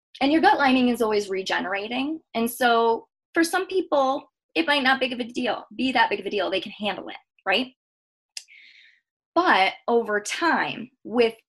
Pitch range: 195-265 Hz